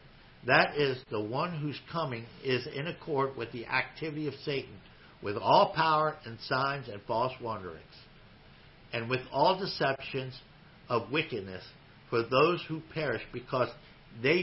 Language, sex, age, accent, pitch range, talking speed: English, male, 60-79, American, 120-150 Hz, 140 wpm